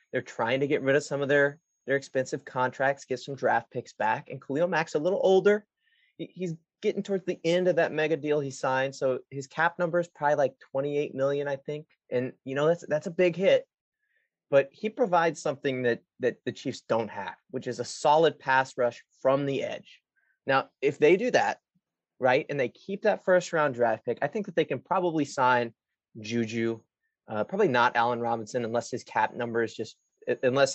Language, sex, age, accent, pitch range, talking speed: English, male, 30-49, American, 125-170 Hz, 205 wpm